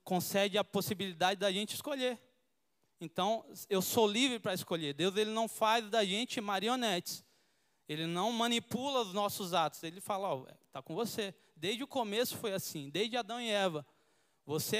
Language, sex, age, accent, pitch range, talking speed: Portuguese, male, 20-39, Brazilian, 175-215 Hz, 165 wpm